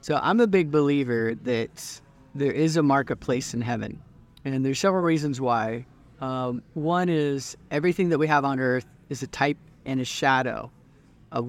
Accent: American